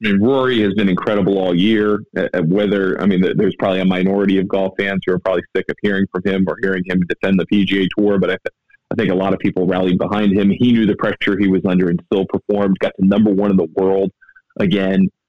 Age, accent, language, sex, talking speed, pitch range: 30-49, American, English, male, 245 wpm, 95-100 Hz